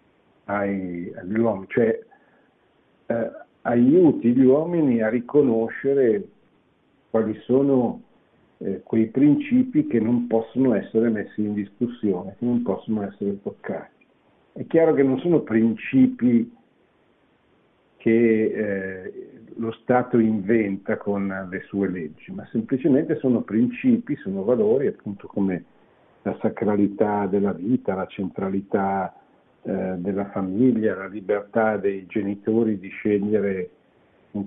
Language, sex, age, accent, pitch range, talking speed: Italian, male, 60-79, native, 100-130 Hz, 110 wpm